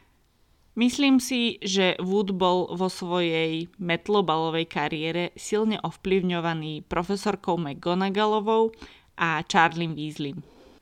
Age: 20-39